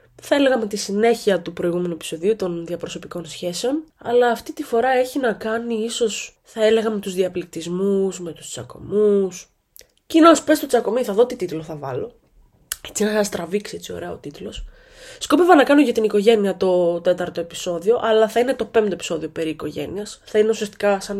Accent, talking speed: native, 180 wpm